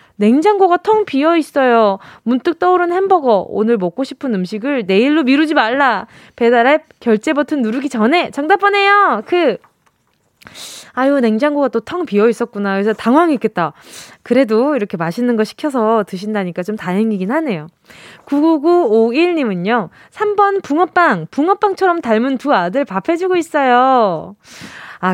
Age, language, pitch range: 20-39, Korean, 220-330 Hz